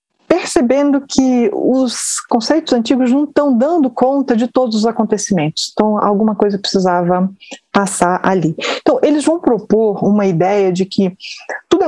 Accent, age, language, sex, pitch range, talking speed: Brazilian, 30-49, Portuguese, female, 185-240 Hz, 140 wpm